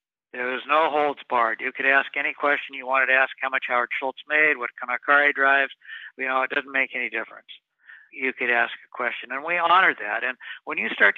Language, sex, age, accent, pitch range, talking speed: English, male, 60-79, American, 130-155 Hz, 240 wpm